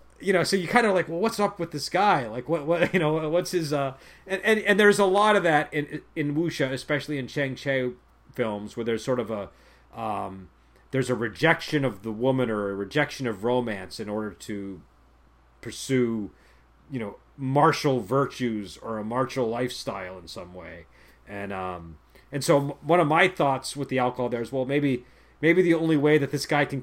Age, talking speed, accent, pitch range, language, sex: 40-59, 205 wpm, American, 105-155 Hz, English, male